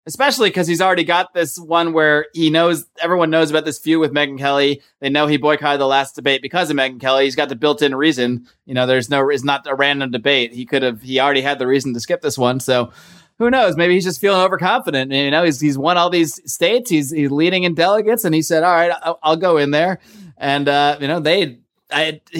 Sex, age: male, 20-39